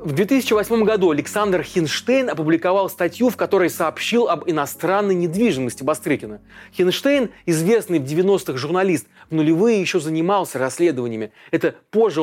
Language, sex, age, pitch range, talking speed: Russian, male, 30-49, 150-205 Hz, 130 wpm